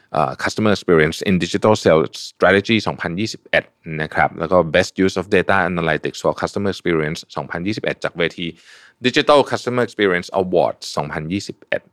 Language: Thai